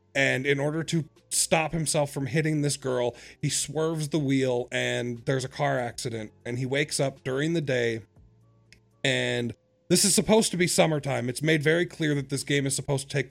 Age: 30-49